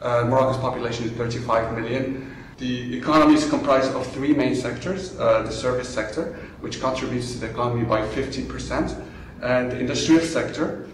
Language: English